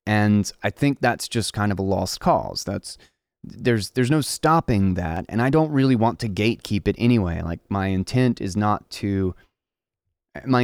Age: 30-49